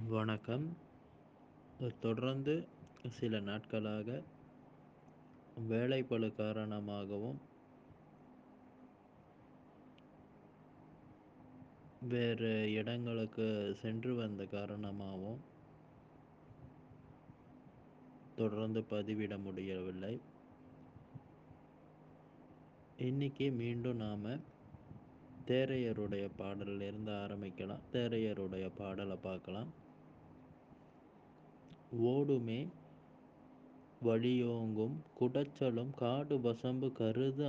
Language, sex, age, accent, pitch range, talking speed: Tamil, male, 20-39, native, 110-130 Hz, 45 wpm